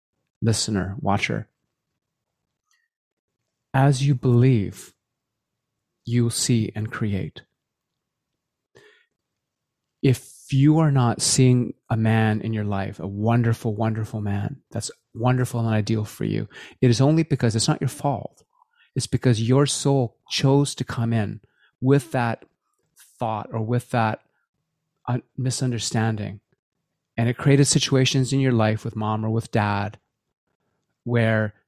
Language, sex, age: English, male, 30-49